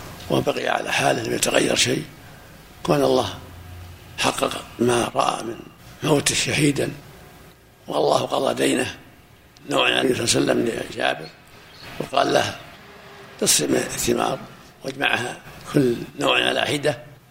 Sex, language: male, Arabic